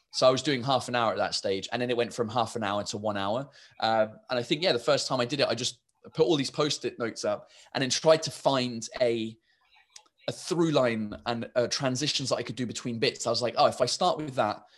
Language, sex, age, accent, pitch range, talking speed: English, male, 20-39, British, 110-135 Hz, 270 wpm